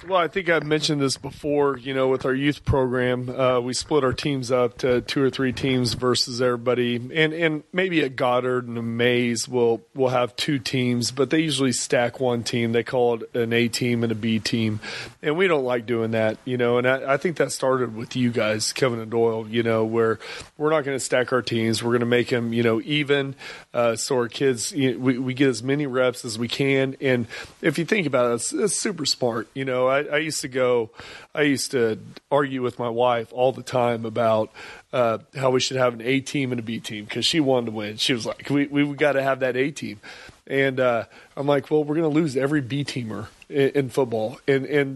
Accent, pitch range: American, 120-140 Hz